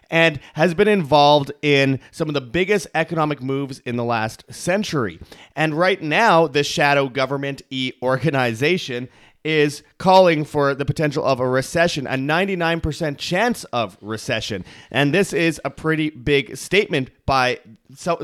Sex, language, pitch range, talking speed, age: male, English, 125-165 Hz, 155 wpm, 30-49